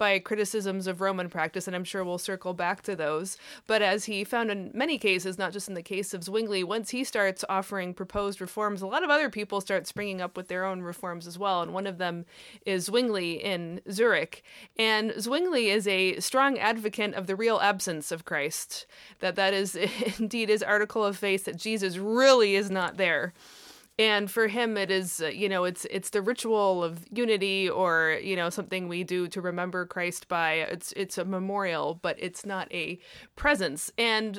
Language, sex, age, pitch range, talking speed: English, female, 20-39, 180-220 Hz, 200 wpm